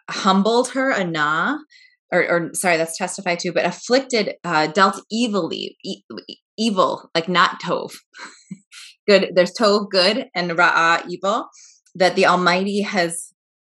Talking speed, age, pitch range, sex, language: 130 wpm, 20-39, 170-225 Hz, female, English